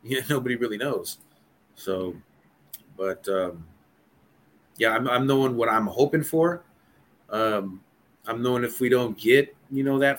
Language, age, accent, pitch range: English, 30-49, American, 105-125 Hz